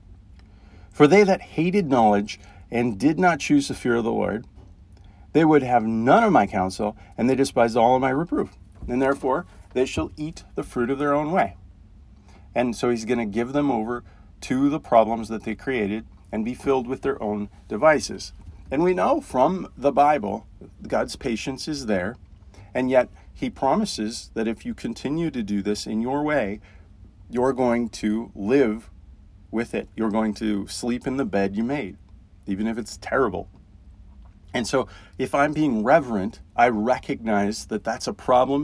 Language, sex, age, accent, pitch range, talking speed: English, male, 40-59, American, 95-125 Hz, 180 wpm